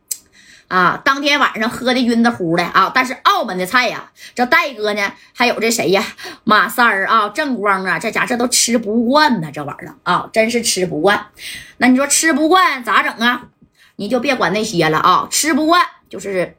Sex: female